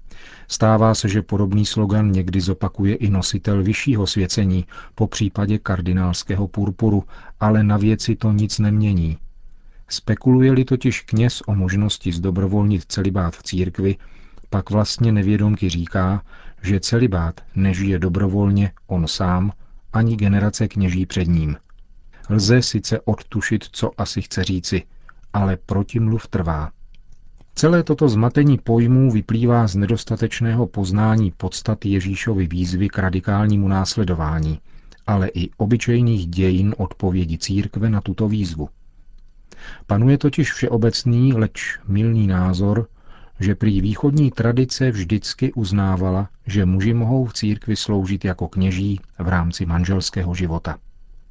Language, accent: Czech, native